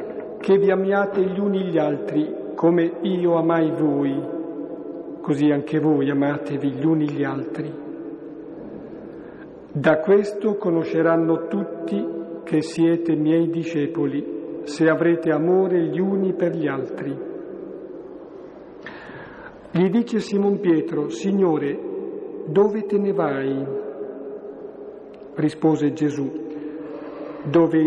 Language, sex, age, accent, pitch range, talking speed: Italian, male, 50-69, native, 155-195 Hz, 100 wpm